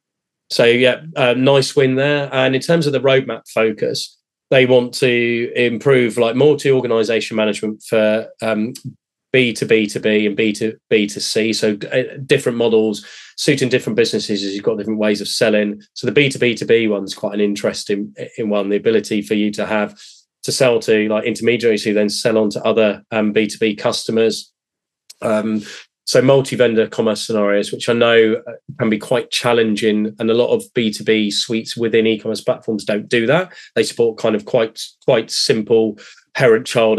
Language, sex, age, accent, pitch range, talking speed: English, male, 20-39, British, 110-125 Hz, 185 wpm